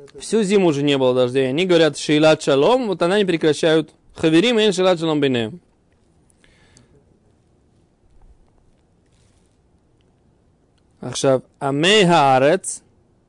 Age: 20-39